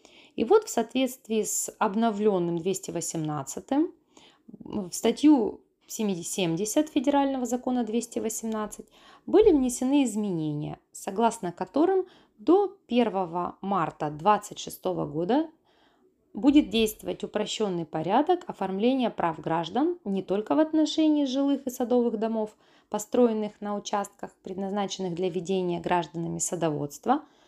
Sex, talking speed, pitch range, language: female, 105 wpm, 185-275 Hz, Russian